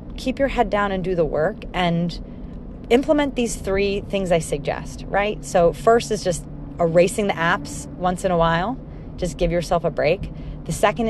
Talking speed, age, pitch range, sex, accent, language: 185 wpm, 30-49, 155-205 Hz, female, American, English